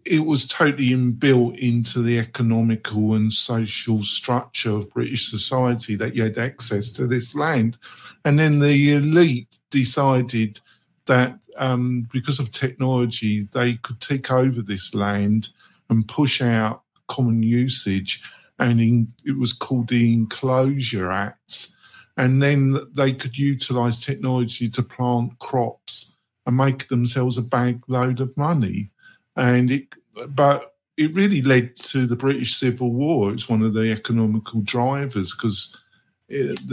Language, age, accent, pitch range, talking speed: English, 50-69, British, 110-135 Hz, 140 wpm